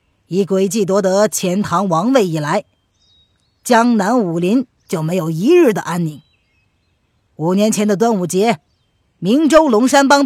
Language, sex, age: Chinese, female, 20-39